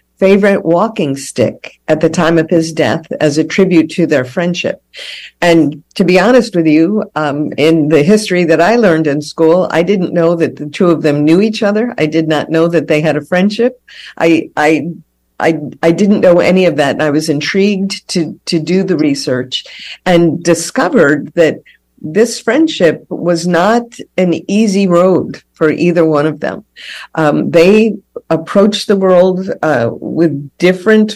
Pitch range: 155-195 Hz